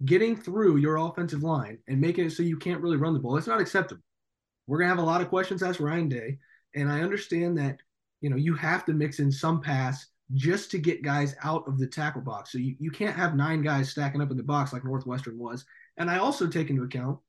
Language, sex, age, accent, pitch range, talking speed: English, male, 20-39, American, 135-175 Hz, 250 wpm